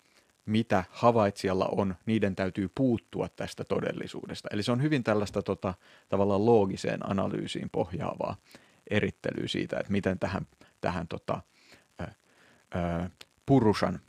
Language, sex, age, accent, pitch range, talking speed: Finnish, male, 30-49, native, 95-110 Hz, 100 wpm